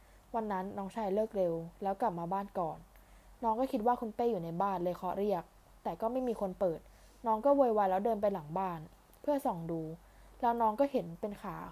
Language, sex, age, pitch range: Thai, female, 20-39, 180-230 Hz